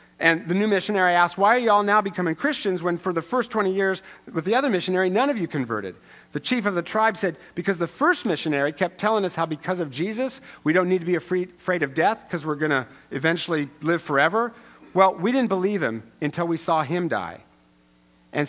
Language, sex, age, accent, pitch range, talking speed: English, male, 50-69, American, 140-195 Hz, 225 wpm